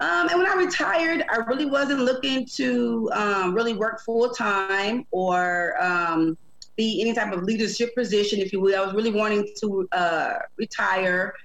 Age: 30-49